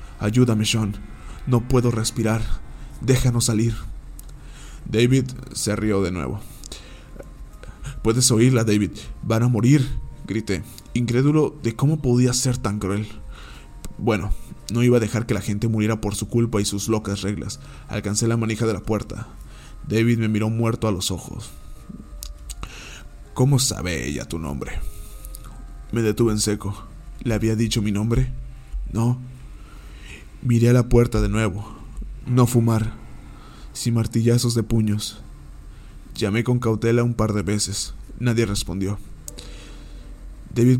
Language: Spanish